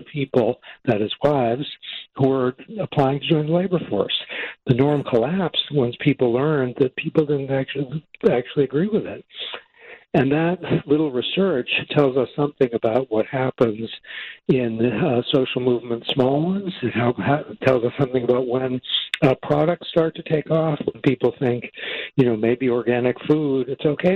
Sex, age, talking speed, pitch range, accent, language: male, 60-79, 160 wpm, 115-145 Hz, American, English